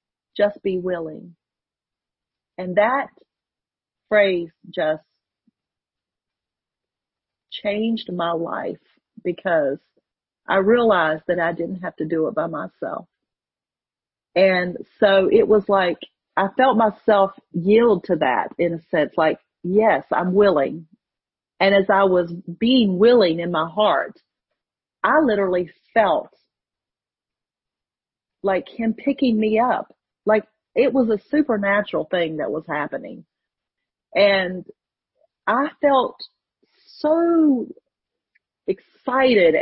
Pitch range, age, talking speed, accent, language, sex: 180-225 Hz, 40-59, 110 wpm, American, English, female